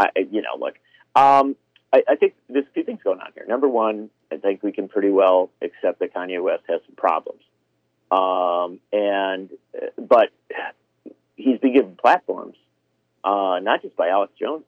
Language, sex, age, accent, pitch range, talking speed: English, male, 50-69, American, 95-140 Hz, 175 wpm